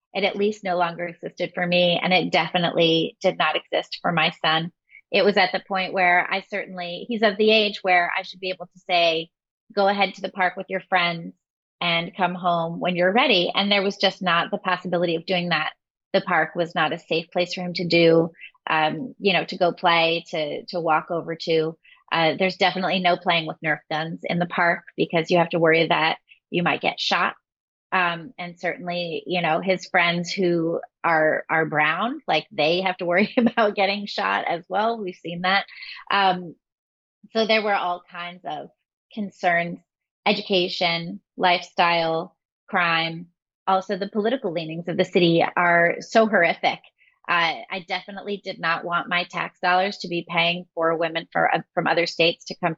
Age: 30-49